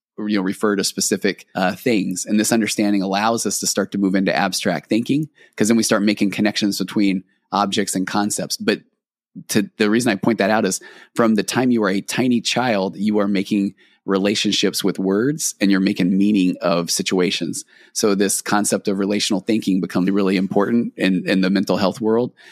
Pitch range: 95-110 Hz